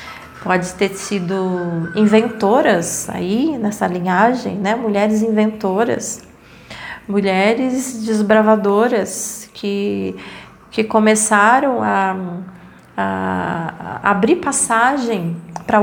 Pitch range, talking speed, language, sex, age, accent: 185-230 Hz, 80 wpm, Portuguese, female, 30-49, Brazilian